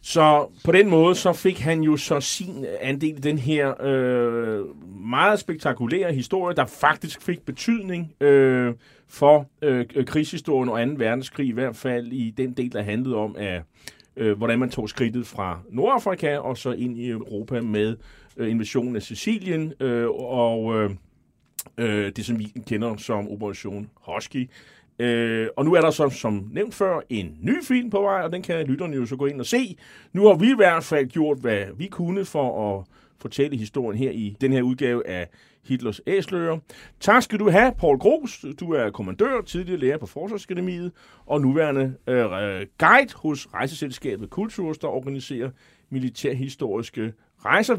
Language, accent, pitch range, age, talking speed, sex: Danish, native, 120-165 Hz, 30-49, 170 wpm, male